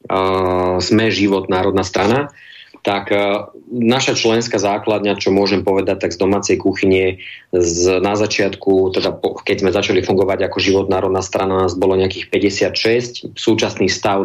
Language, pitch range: Slovak, 95-110 Hz